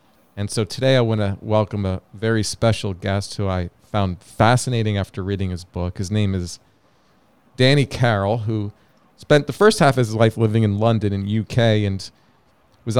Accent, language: American, English